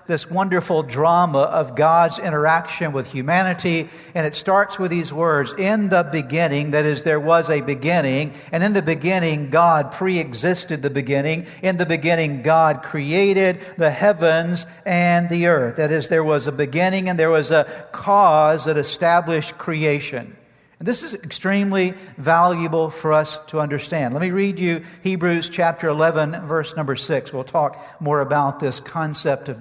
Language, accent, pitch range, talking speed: English, American, 155-185 Hz, 165 wpm